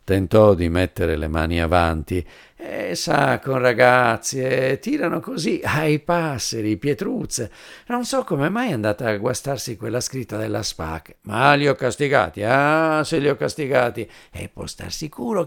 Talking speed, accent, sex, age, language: 160 wpm, native, male, 50-69, Italian